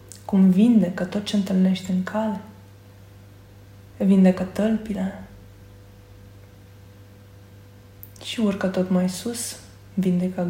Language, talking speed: Romanian, 85 wpm